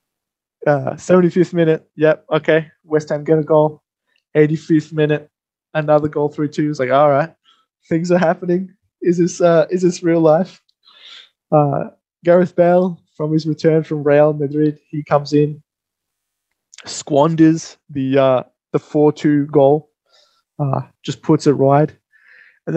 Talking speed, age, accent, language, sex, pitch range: 140 wpm, 20-39, Australian, English, male, 140-165 Hz